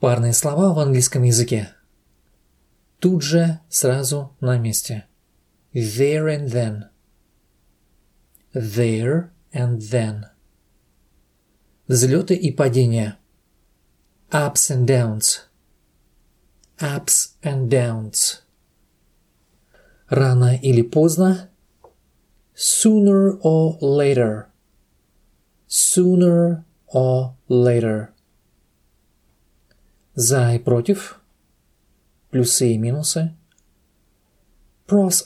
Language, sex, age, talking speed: English, male, 40-59, 70 wpm